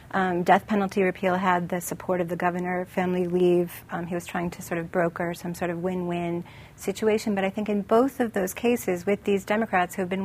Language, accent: English, American